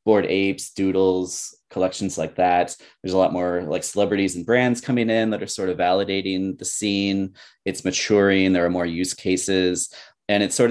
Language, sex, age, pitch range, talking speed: English, male, 30-49, 90-115 Hz, 185 wpm